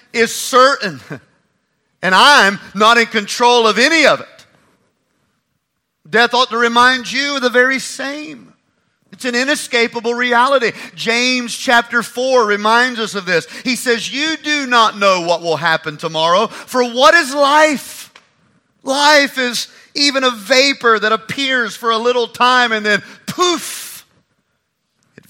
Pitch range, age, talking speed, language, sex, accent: 195-245 Hz, 40-59, 140 wpm, English, male, American